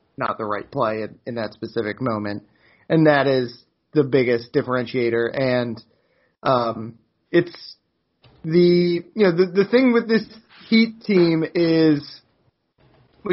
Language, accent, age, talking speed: English, American, 30-49, 135 wpm